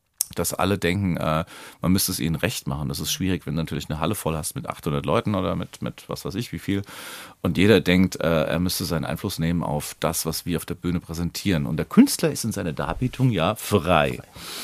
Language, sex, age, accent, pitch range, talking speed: German, male, 40-59, German, 95-135 Hz, 235 wpm